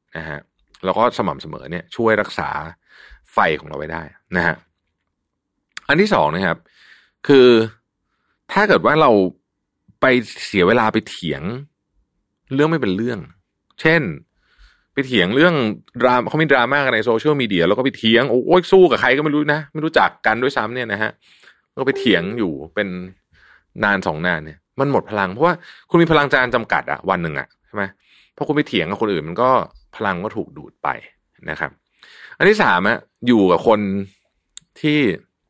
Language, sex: Thai, male